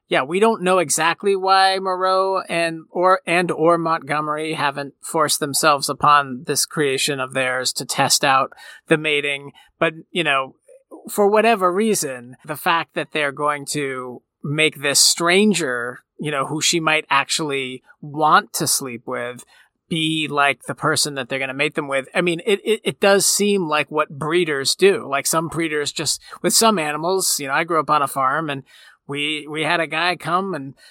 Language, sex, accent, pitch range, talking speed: English, male, American, 145-180 Hz, 185 wpm